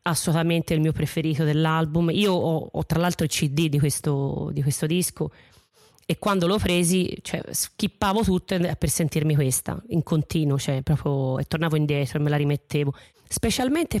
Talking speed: 165 wpm